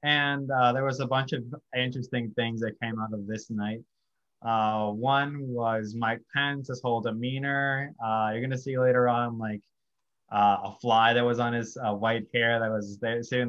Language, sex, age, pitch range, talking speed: English, male, 20-39, 115-130 Hz, 190 wpm